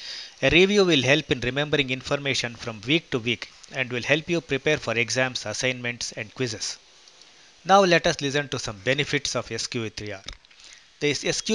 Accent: Indian